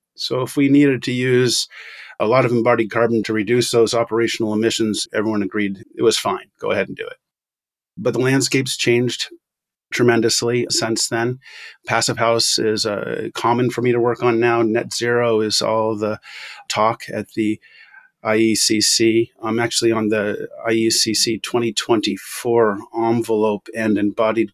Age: 30-49